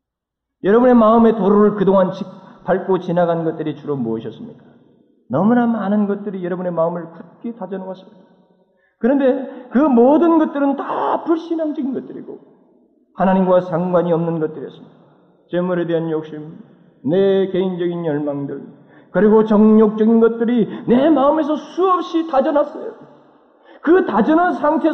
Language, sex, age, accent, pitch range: Korean, male, 40-59, native, 165-235 Hz